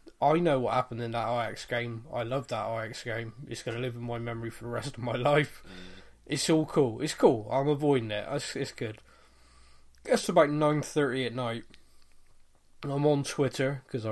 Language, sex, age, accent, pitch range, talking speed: English, male, 20-39, British, 115-145 Hz, 200 wpm